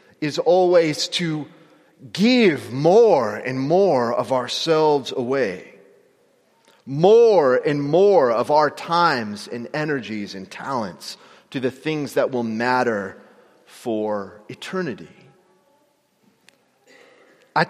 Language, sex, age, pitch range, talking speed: English, male, 30-49, 140-205 Hz, 100 wpm